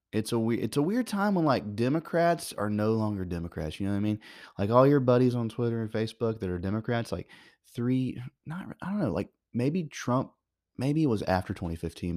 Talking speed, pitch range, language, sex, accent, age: 215 wpm, 100-145 Hz, English, male, American, 30-49